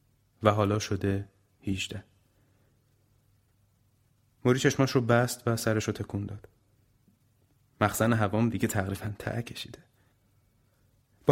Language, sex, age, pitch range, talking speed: Persian, male, 30-49, 105-120 Hz, 105 wpm